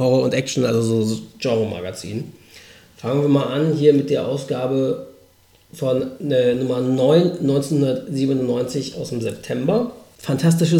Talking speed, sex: 130 wpm, male